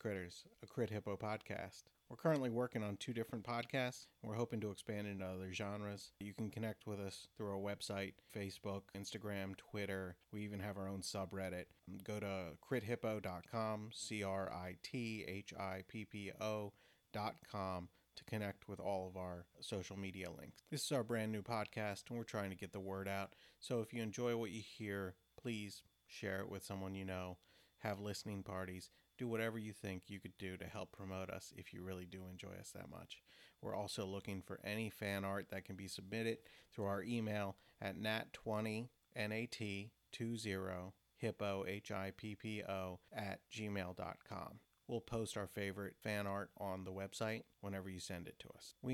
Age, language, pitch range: 30-49, English, 95-110 Hz